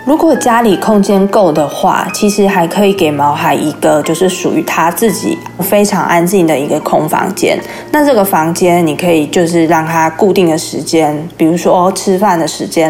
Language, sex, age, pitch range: Chinese, female, 20-39, 165-205 Hz